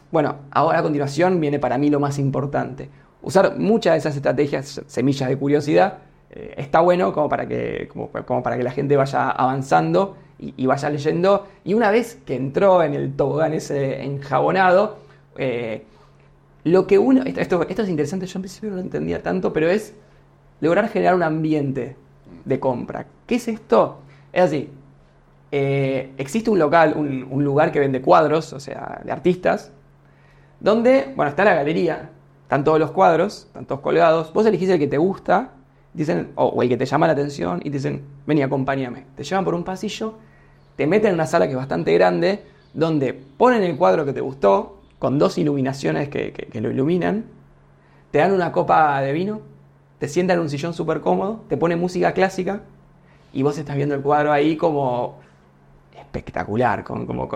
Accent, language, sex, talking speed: Argentinian, Spanish, male, 180 wpm